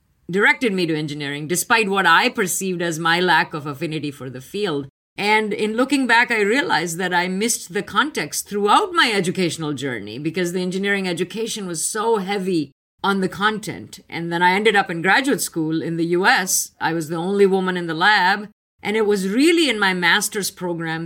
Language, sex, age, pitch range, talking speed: English, female, 50-69, 165-220 Hz, 195 wpm